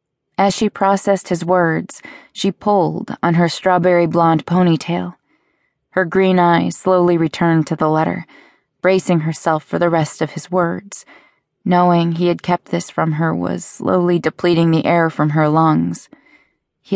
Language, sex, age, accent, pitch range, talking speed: English, female, 20-39, American, 160-185 Hz, 155 wpm